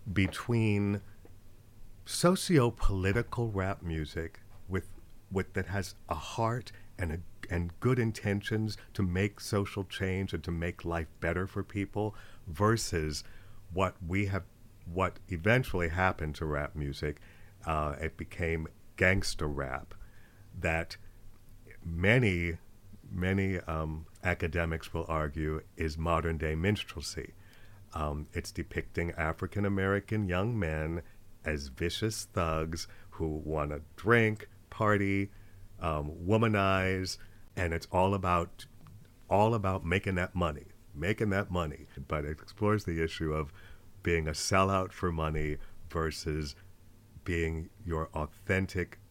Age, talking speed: 50-69, 115 wpm